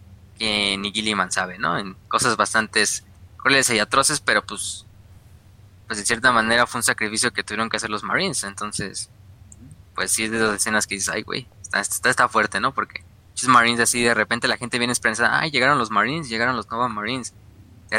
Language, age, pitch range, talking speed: Spanish, 20-39, 100-125 Hz, 205 wpm